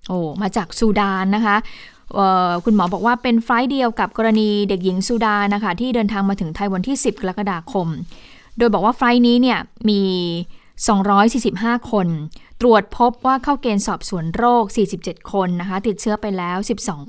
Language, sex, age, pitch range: Thai, female, 20-39, 185-230 Hz